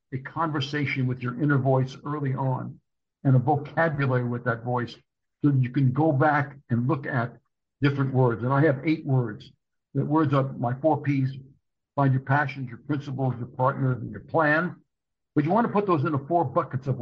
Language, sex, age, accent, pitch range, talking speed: English, male, 60-79, American, 130-150 Hz, 200 wpm